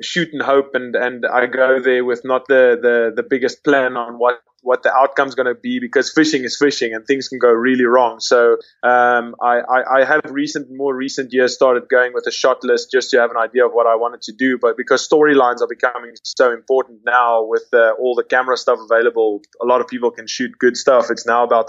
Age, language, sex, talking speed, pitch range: 20-39, English, male, 230 wpm, 120-145 Hz